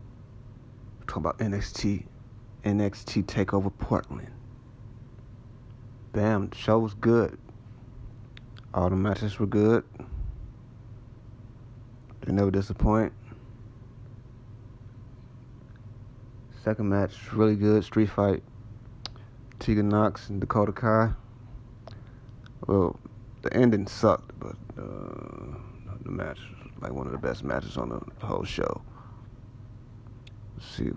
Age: 30-49